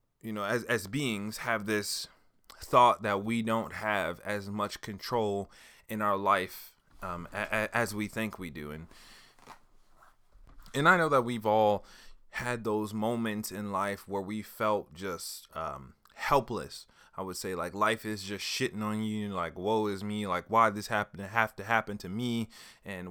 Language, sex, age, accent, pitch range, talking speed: English, male, 20-39, American, 100-120 Hz, 180 wpm